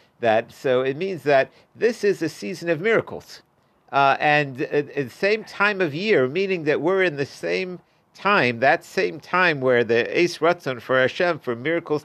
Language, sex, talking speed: English, male, 190 wpm